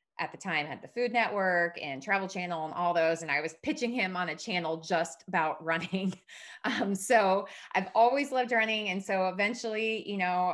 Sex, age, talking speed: female, 20-39, 200 wpm